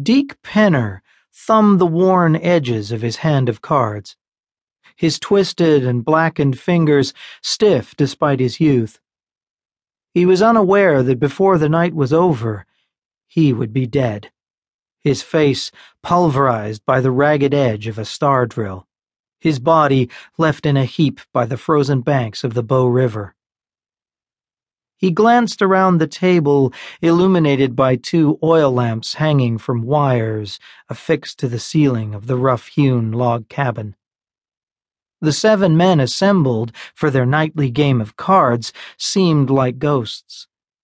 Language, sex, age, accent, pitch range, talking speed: English, male, 40-59, American, 125-165 Hz, 135 wpm